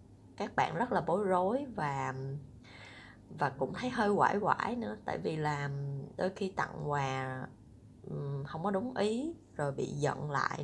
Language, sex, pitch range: Vietnamese, female, 135-205 Hz